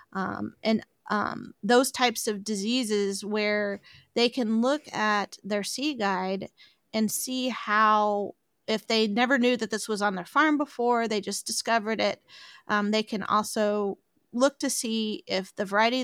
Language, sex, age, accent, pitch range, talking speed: English, female, 30-49, American, 205-240 Hz, 160 wpm